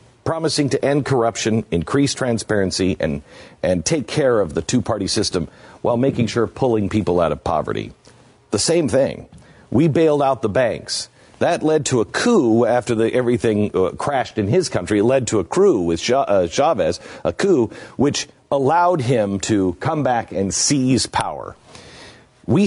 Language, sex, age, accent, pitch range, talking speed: English, male, 50-69, American, 110-150 Hz, 170 wpm